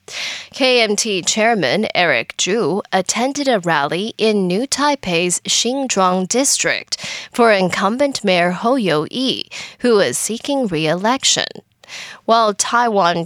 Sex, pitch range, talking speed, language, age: female, 180-250 Hz, 105 wpm, English, 10-29